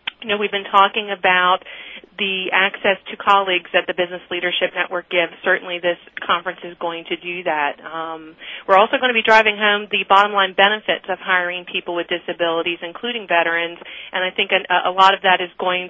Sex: female